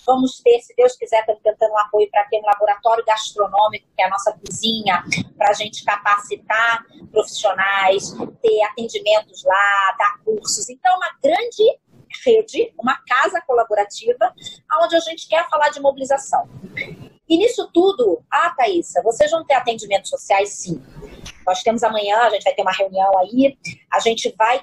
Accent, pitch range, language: Brazilian, 195-255 Hz, Portuguese